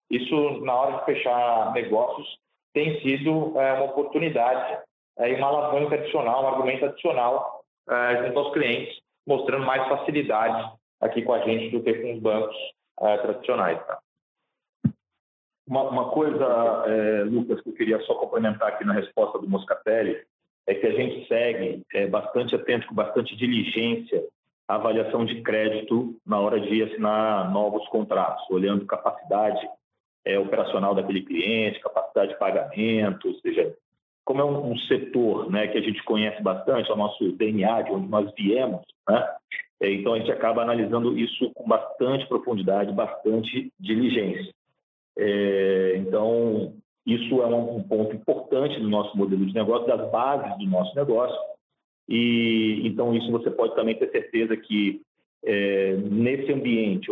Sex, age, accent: male, 40-59, Brazilian